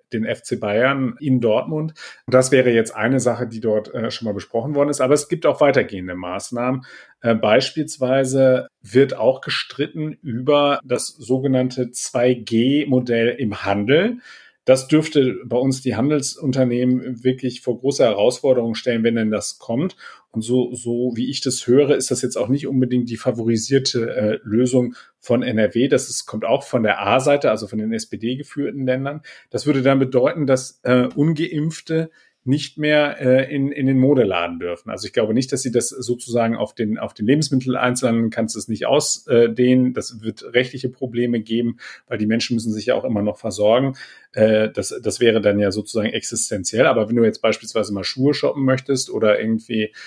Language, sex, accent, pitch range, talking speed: German, male, German, 115-135 Hz, 180 wpm